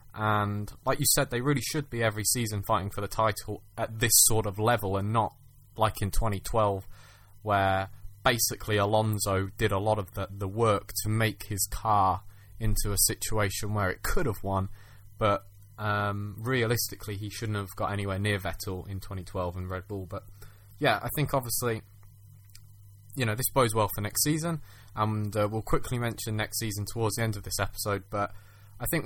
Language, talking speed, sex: English, 185 wpm, male